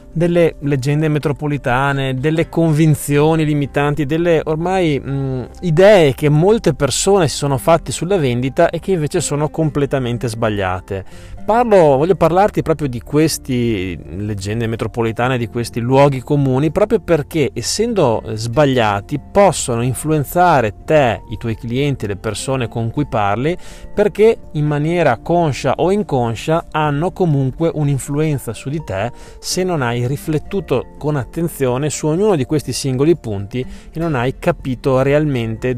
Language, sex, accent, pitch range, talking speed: Italian, male, native, 125-155 Hz, 135 wpm